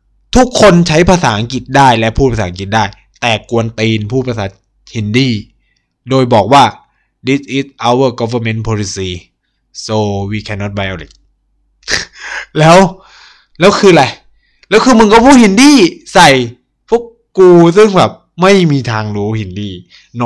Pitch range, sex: 115-165 Hz, male